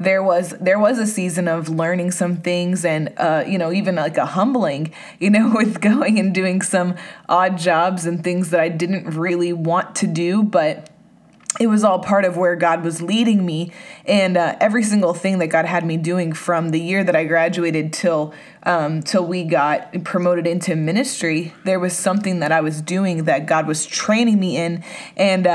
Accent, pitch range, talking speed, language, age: American, 170-195 Hz, 200 wpm, English, 20-39